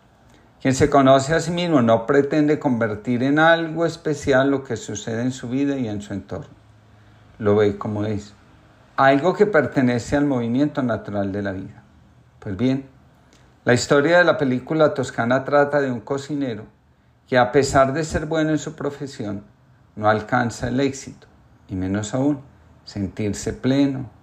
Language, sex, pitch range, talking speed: Spanish, male, 110-145 Hz, 160 wpm